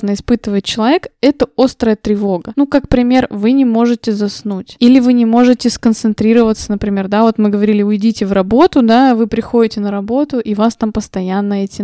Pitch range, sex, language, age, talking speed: 210-245 Hz, female, Russian, 20-39, 175 wpm